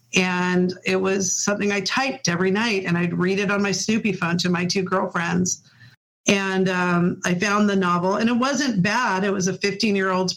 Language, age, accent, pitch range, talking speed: English, 40-59, American, 180-220 Hz, 195 wpm